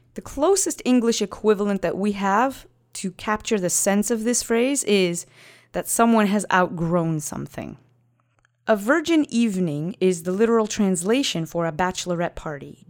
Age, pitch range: 30-49, 170-230 Hz